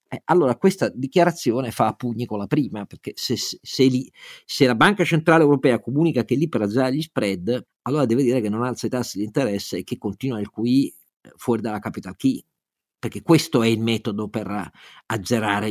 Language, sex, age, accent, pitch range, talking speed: Italian, male, 50-69, native, 120-170 Hz, 195 wpm